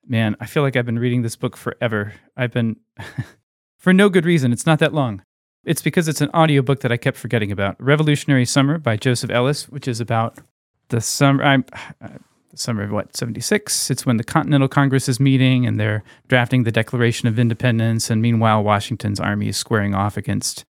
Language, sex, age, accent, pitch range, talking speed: English, male, 30-49, American, 115-140 Hz, 200 wpm